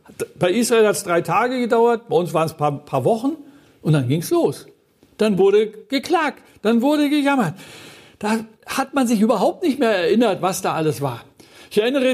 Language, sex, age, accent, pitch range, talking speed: German, male, 60-79, German, 165-245 Hz, 195 wpm